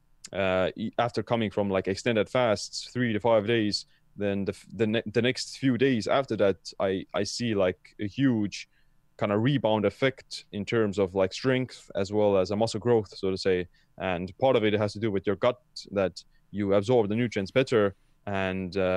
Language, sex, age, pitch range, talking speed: English, male, 20-39, 95-115 Hz, 195 wpm